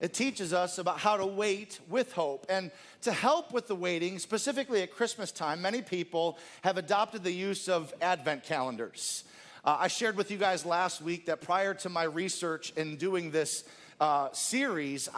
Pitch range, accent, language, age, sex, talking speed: 170-200 Hz, American, English, 40-59, male, 180 wpm